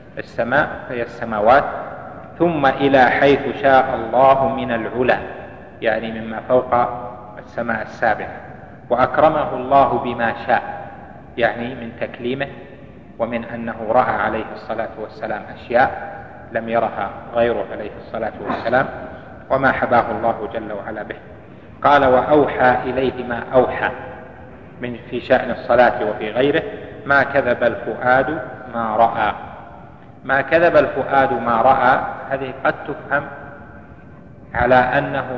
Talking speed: 115 wpm